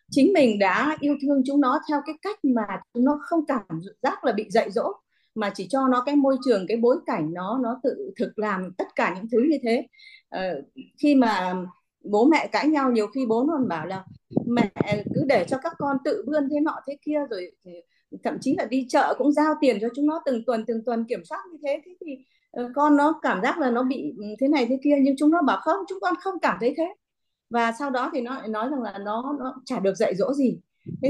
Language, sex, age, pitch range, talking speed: Vietnamese, female, 30-49, 215-290 Hz, 245 wpm